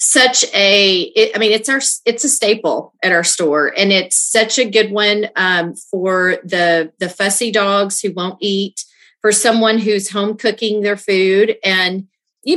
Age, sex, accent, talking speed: 40-59, female, American, 175 wpm